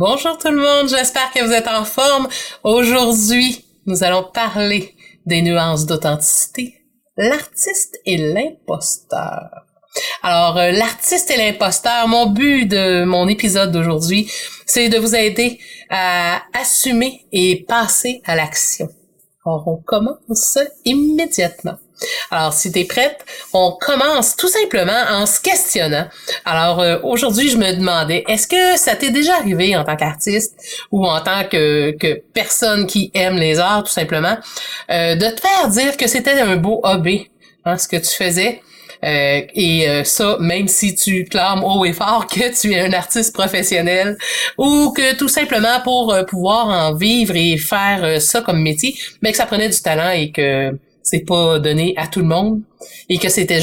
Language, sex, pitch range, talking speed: French, female, 170-245 Hz, 165 wpm